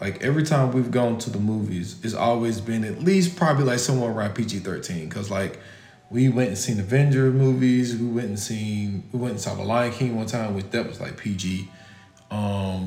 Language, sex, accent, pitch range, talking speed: English, male, American, 105-125 Hz, 210 wpm